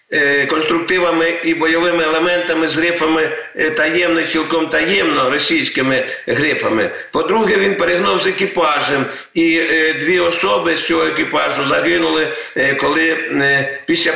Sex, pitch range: male, 155-180 Hz